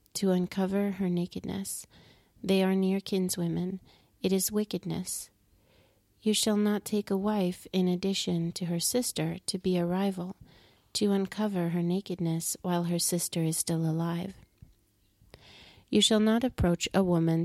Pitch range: 165-195 Hz